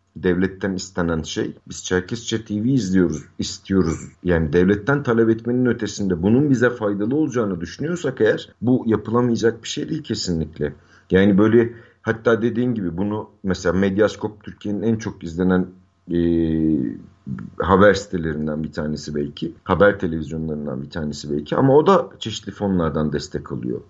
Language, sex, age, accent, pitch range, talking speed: Turkish, male, 50-69, native, 85-110 Hz, 140 wpm